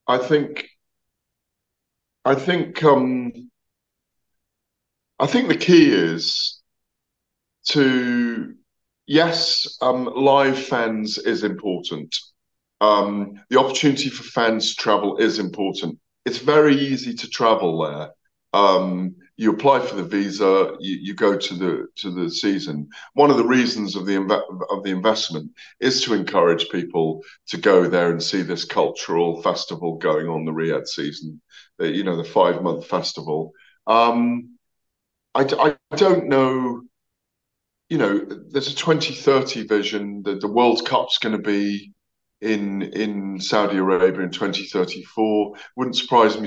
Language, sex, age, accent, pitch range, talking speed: English, male, 50-69, British, 100-135 Hz, 135 wpm